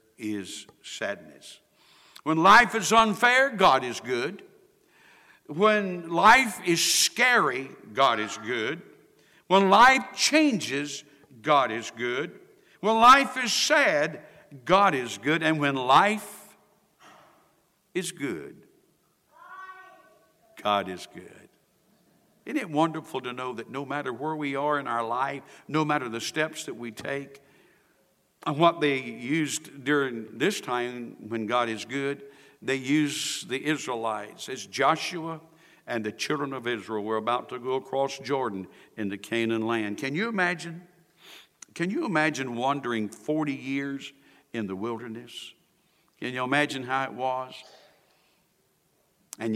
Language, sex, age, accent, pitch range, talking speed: English, male, 60-79, American, 120-170 Hz, 130 wpm